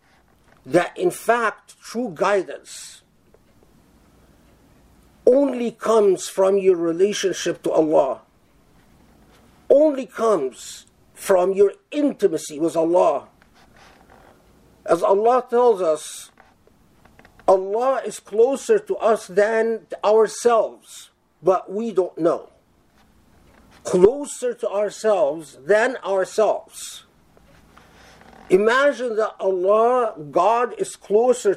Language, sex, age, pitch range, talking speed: English, male, 50-69, 195-250 Hz, 85 wpm